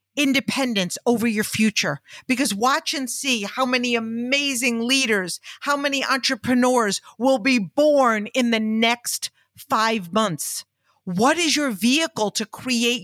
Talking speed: 135 wpm